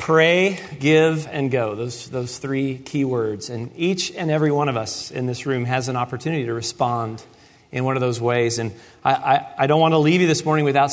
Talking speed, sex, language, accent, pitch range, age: 225 wpm, male, English, American, 120-155 Hz, 40-59